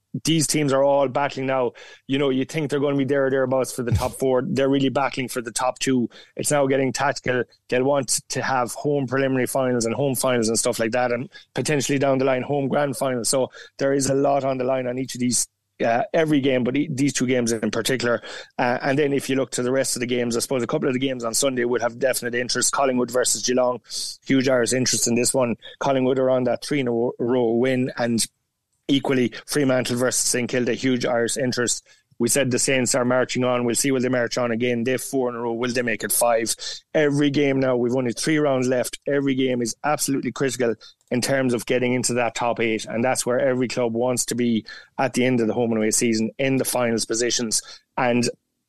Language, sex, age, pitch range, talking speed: English, male, 30-49, 120-135 Hz, 240 wpm